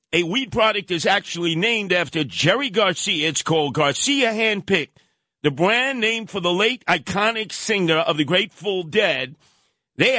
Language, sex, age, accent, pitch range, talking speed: English, male, 50-69, American, 160-205 Hz, 155 wpm